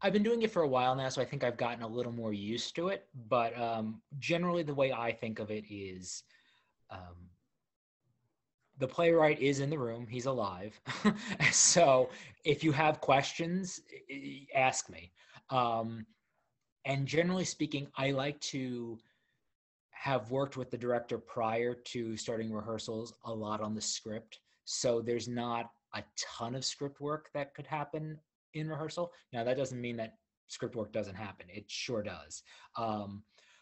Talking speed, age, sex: 165 wpm, 20-39, male